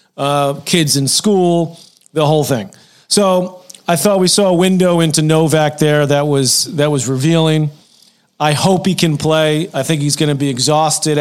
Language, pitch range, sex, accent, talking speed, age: English, 140-165 Hz, male, American, 180 wpm, 40-59